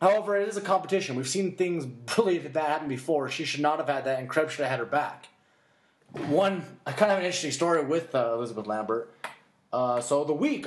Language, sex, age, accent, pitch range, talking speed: English, male, 20-39, American, 130-180 Hz, 240 wpm